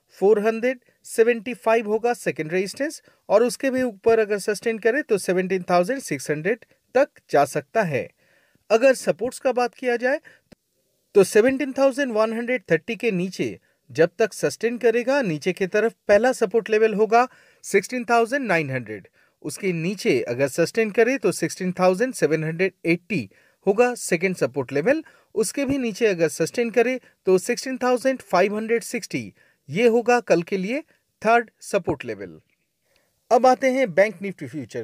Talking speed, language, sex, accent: 50 wpm, Hindi, male, native